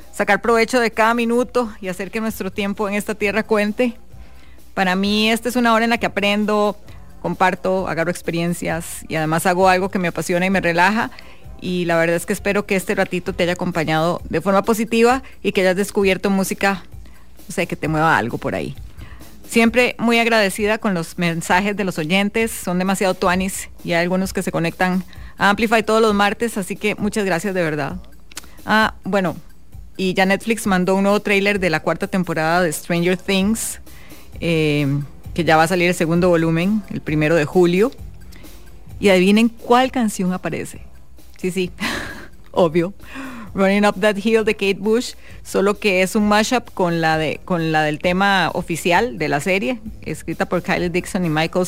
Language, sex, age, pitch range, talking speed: English, female, 30-49, 170-210 Hz, 185 wpm